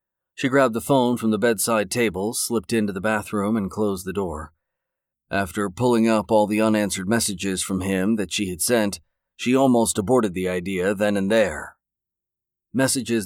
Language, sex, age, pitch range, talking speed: English, male, 40-59, 100-125 Hz, 170 wpm